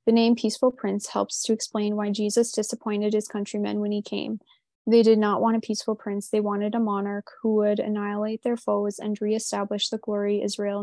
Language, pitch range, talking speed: English, 205-225 Hz, 200 wpm